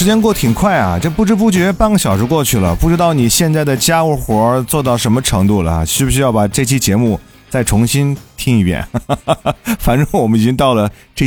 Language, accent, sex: Chinese, native, male